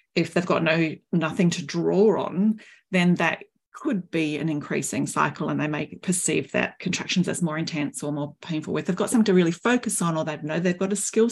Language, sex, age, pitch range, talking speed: English, female, 40-59, 160-200 Hz, 225 wpm